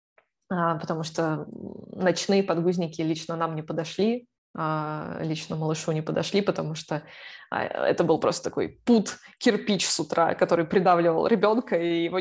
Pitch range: 165-190 Hz